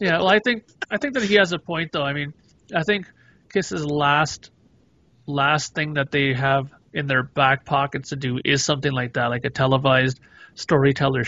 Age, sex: 30-49, male